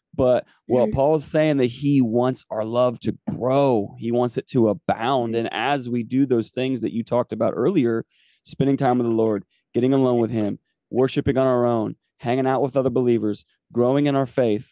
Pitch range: 110-130 Hz